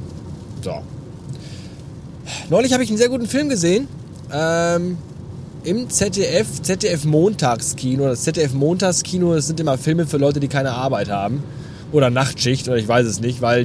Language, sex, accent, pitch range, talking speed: German, male, German, 130-175 Hz, 155 wpm